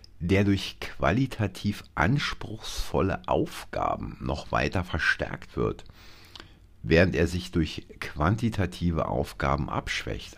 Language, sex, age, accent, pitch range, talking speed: German, male, 50-69, German, 75-100 Hz, 95 wpm